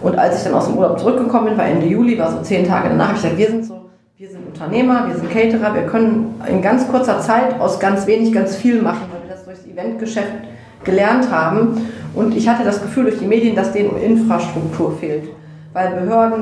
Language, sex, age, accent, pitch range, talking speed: German, female, 30-49, German, 185-230 Hz, 230 wpm